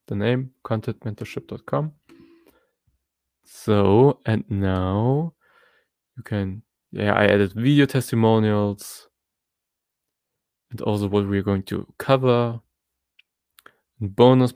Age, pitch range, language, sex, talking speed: 20-39, 105-145 Hz, English, male, 85 wpm